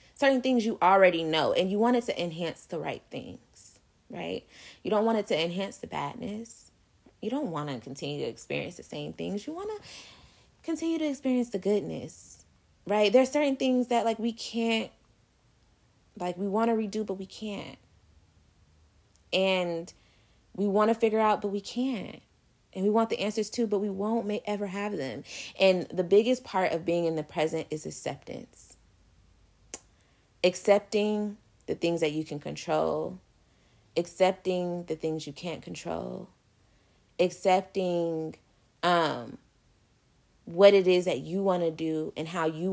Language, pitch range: English, 160-215 Hz